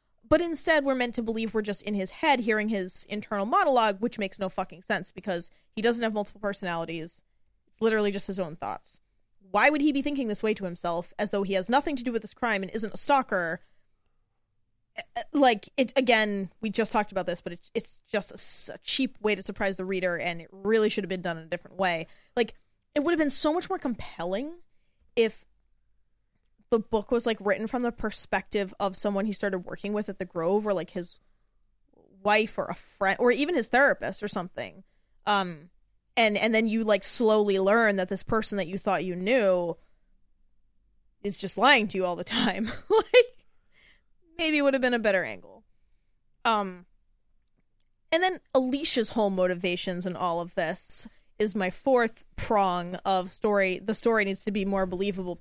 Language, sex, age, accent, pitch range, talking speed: English, female, 20-39, American, 190-235 Hz, 195 wpm